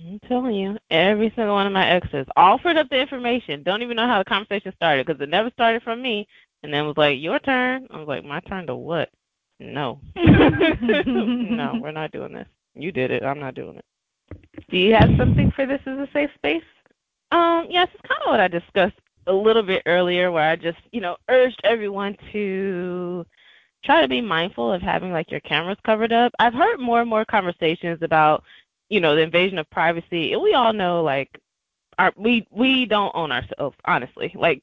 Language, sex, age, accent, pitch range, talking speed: English, female, 20-39, American, 155-220 Hz, 205 wpm